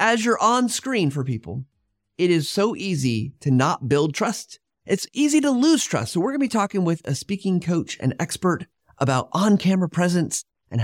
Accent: American